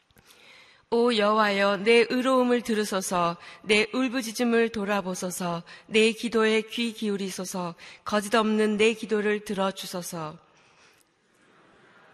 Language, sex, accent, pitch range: Korean, female, native, 185-225 Hz